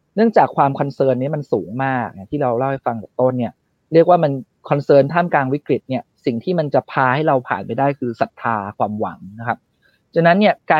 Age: 30-49